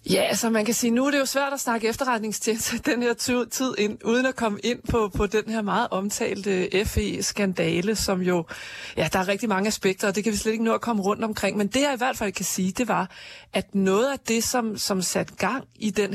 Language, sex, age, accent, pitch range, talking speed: Danish, female, 30-49, native, 195-235 Hz, 250 wpm